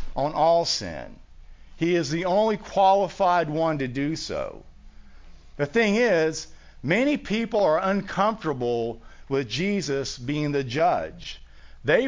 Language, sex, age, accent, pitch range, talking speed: English, male, 50-69, American, 120-195 Hz, 125 wpm